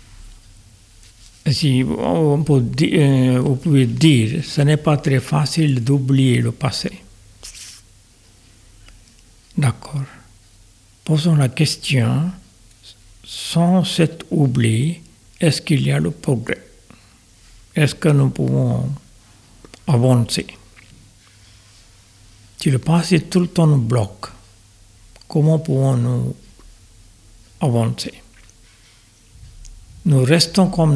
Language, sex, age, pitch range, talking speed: French, male, 60-79, 100-145 Hz, 90 wpm